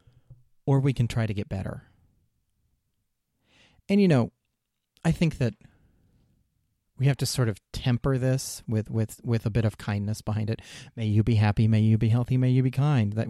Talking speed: 190 wpm